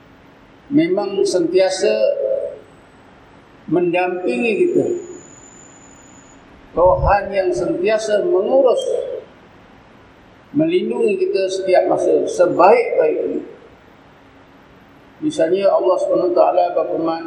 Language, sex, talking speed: Malay, male, 65 wpm